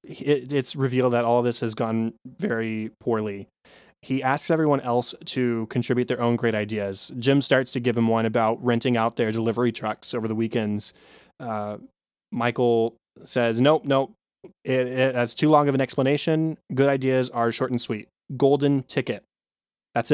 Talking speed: 170 wpm